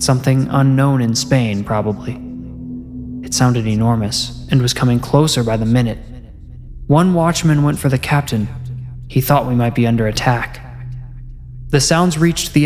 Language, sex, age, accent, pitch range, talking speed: English, male, 20-39, American, 115-135 Hz, 150 wpm